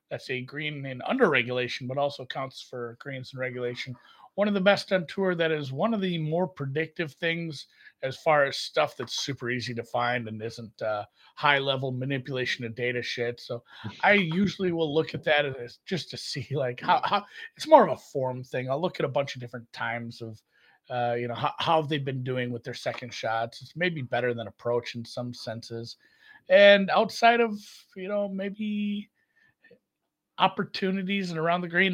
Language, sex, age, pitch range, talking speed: English, male, 30-49, 120-185 Hz, 195 wpm